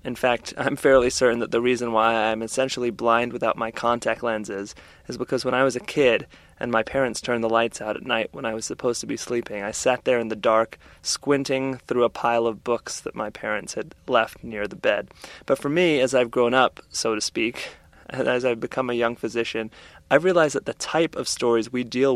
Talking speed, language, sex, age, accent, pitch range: 230 wpm, English, male, 20-39, American, 115-130 Hz